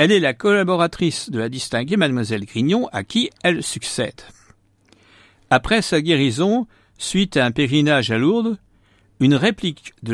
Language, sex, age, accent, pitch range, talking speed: French, male, 60-79, French, 110-165 Hz, 150 wpm